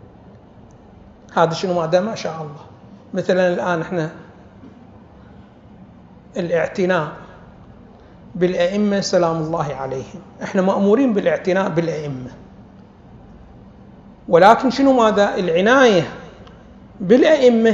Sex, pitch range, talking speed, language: male, 180-225 Hz, 80 wpm, Arabic